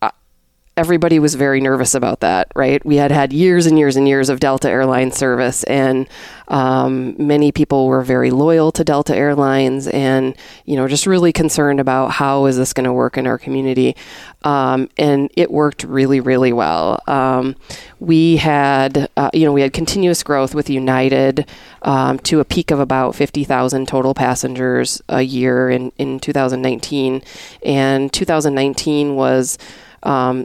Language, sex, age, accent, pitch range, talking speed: English, female, 30-49, American, 130-145 Hz, 170 wpm